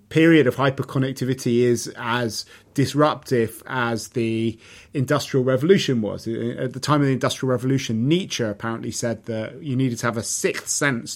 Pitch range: 115-135 Hz